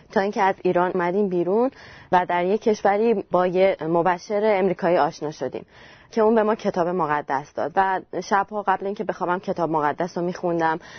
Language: Persian